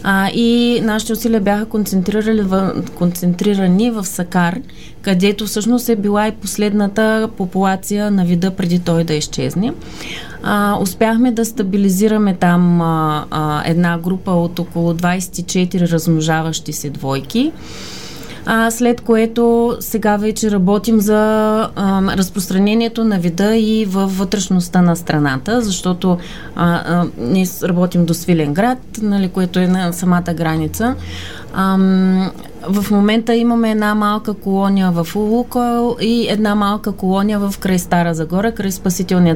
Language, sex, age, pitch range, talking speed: Bulgarian, female, 30-49, 170-215 Hz, 125 wpm